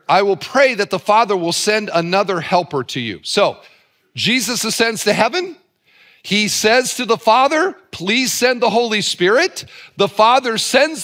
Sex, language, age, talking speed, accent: male, English, 50-69, 165 wpm, American